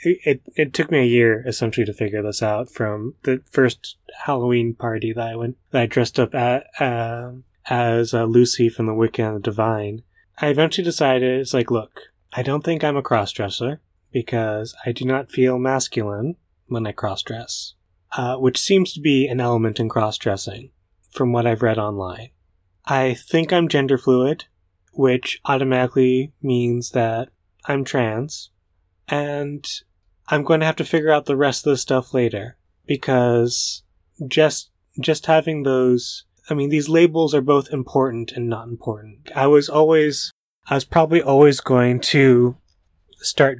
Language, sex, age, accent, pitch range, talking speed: English, male, 20-39, American, 115-145 Hz, 165 wpm